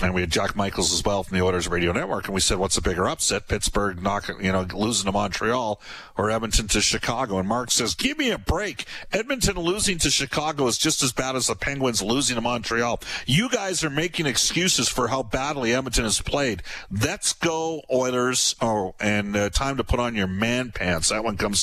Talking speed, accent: 215 wpm, American